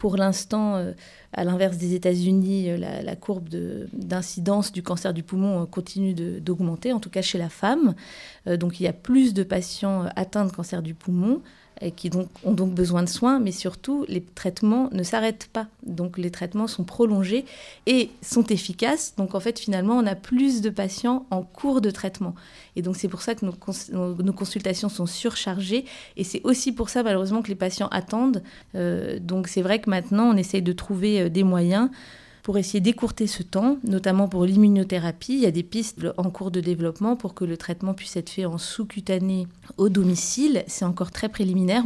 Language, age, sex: French, 30-49, female